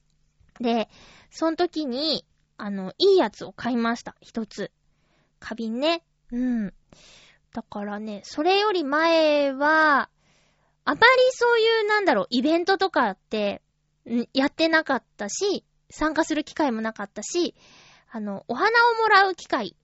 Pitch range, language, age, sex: 205-330 Hz, Japanese, 20-39, female